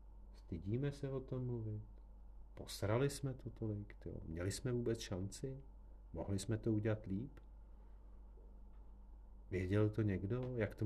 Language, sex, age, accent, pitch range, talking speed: Czech, male, 50-69, native, 90-110 Hz, 135 wpm